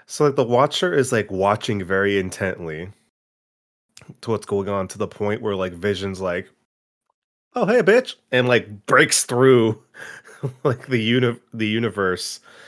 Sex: male